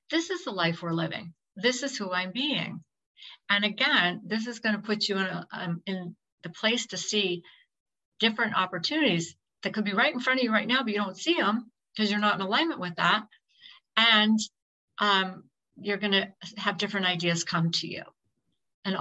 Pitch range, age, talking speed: 180-220 Hz, 50-69, 195 wpm